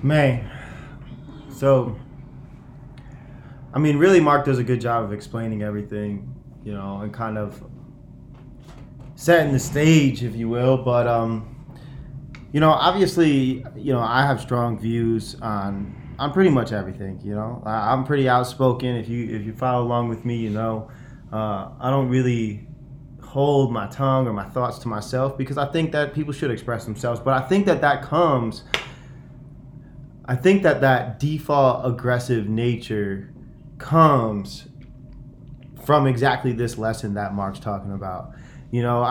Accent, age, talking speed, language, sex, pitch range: American, 20-39, 155 wpm, English, male, 115-140 Hz